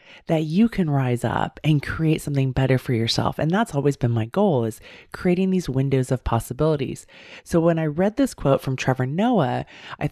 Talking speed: 195 wpm